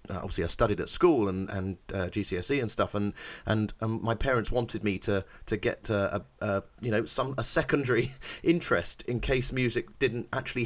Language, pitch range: English, 105-135 Hz